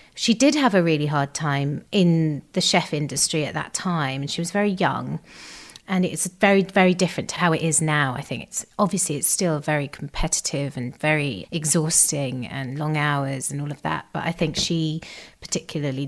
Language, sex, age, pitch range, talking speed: English, female, 30-49, 150-185 Hz, 195 wpm